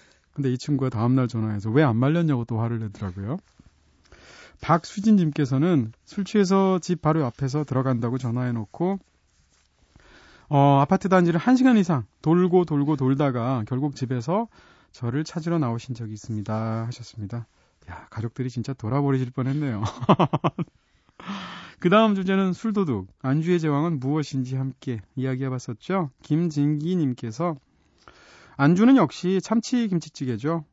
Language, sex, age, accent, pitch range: Korean, male, 30-49, native, 115-170 Hz